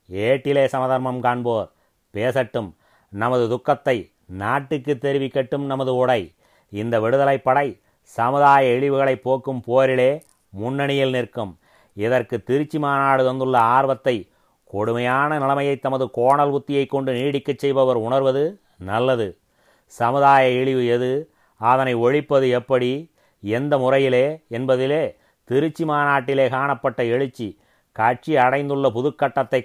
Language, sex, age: Tamil, male, 30-49